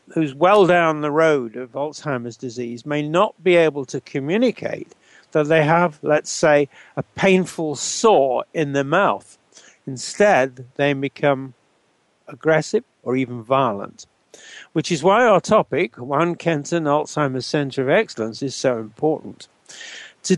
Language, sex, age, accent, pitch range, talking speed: English, male, 60-79, British, 135-180 Hz, 140 wpm